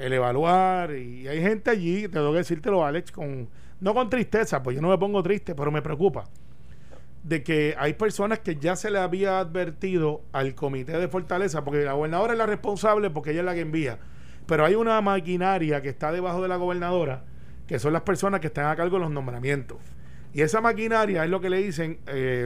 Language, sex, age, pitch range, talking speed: Spanish, male, 30-49, 150-195 Hz, 215 wpm